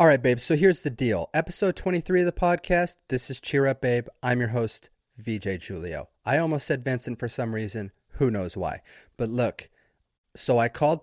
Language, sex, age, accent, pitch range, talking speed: English, male, 30-49, American, 120-155 Hz, 200 wpm